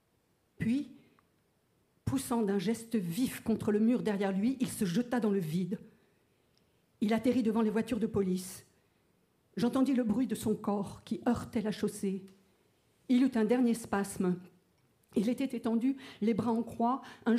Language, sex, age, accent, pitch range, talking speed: French, female, 50-69, French, 200-240 Hz, 160 wpm